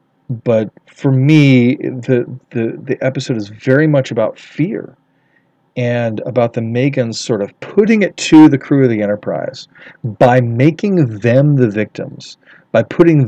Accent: American